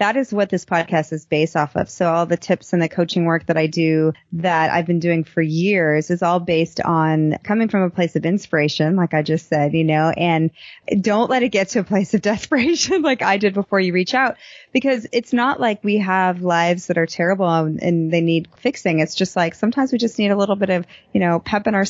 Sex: female